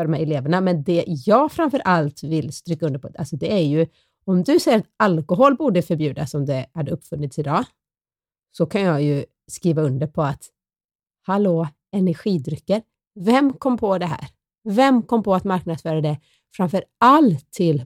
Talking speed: 165 wpm